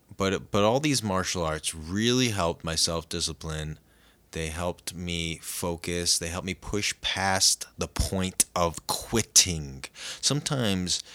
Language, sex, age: English, male, 20-39